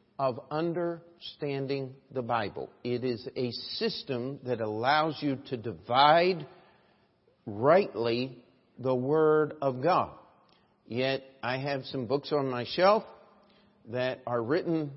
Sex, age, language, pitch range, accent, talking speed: male, 50-69, English, 120-155 Hz, American, 115 wpm